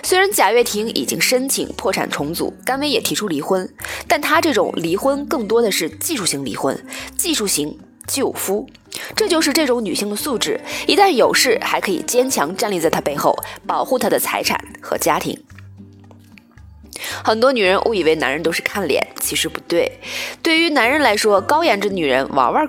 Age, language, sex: 20-39, Chinese, female